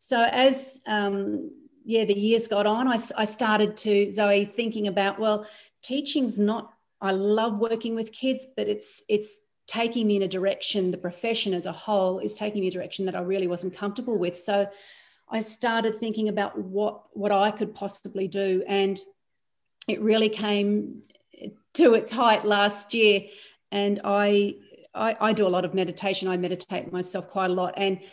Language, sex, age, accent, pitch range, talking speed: English, female, 40-59, Australian, 185-215 Hz, 180 wpm